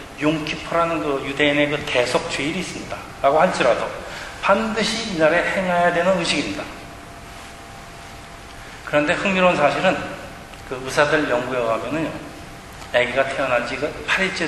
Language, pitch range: Korean, 100-155 Hz